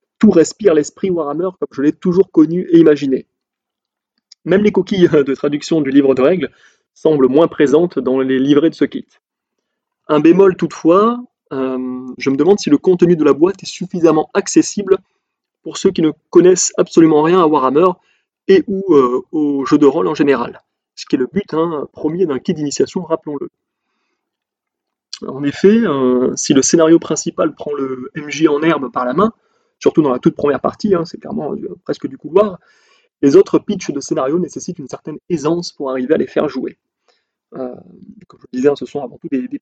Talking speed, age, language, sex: 195 wpm, 20-39, French, male